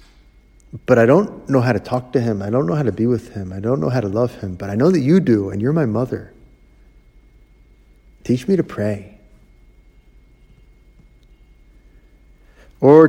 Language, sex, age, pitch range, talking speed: English, male, 50-69, 100-125 Hz, 180 wpm